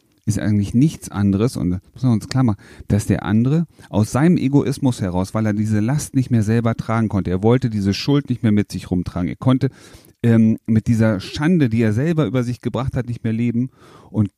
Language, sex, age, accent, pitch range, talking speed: German, male, 40-59, German, 105-140 Hz, 215 wpm